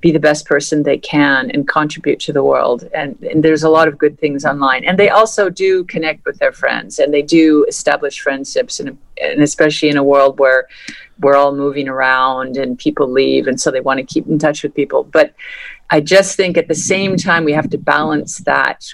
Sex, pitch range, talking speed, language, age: female, 140-160 Hz, 220 wpm, English, 50-69